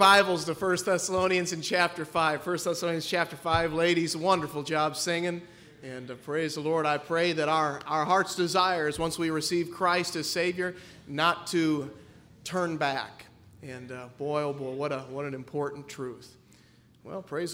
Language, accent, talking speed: English, American, 170 wpm